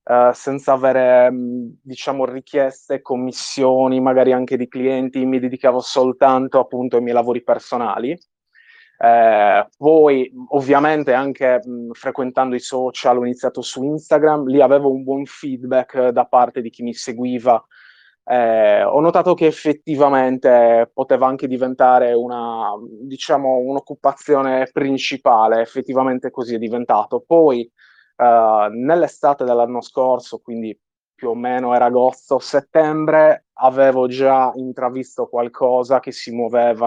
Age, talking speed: 20-39, 120 wpm